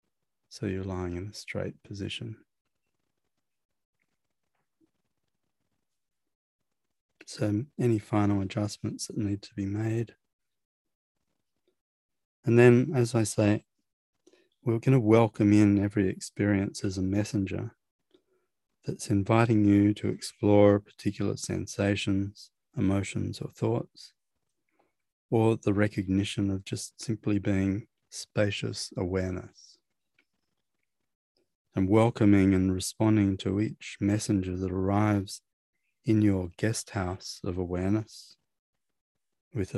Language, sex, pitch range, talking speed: English, male, 95-115 Hz, 100 wpm